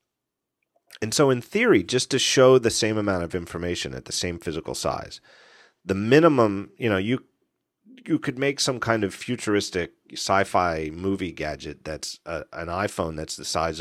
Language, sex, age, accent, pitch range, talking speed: English, male, 40-59, American, 85-115 Hz, 170 wpm